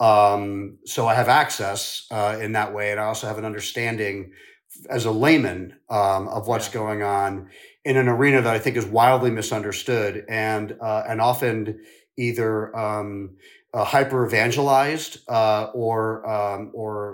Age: 40-59